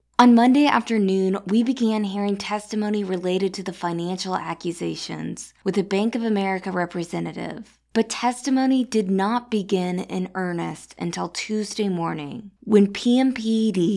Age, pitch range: 20-39, 170-215 Hz